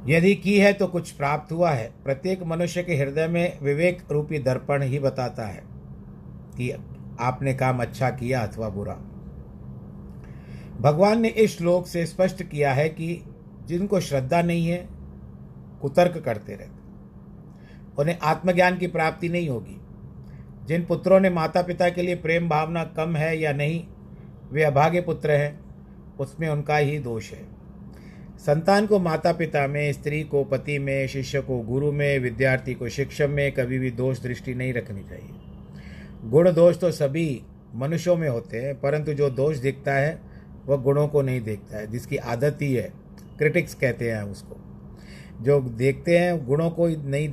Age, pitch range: 50-69, 115-160 Hz